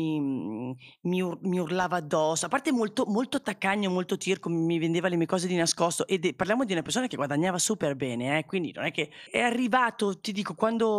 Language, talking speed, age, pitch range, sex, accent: Italian, 210 wpm, 30-49, 160-215 Hz, female, native